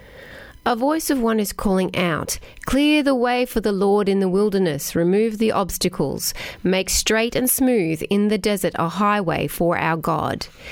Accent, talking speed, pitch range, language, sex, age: Australian, 175 wpm, 175-225 Hz, English, female, 30-49